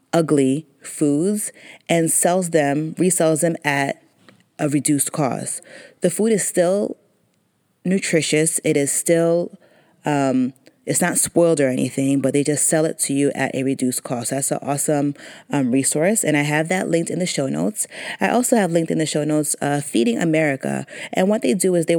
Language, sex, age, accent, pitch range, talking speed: English, female, 30-49, American, 140-170 Hz, 185 wpm